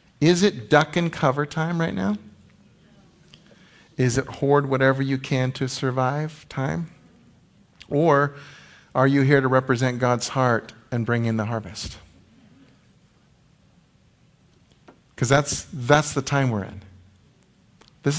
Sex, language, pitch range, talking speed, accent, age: male, English, 115-150 Hz, 125 wpm, American, 50-69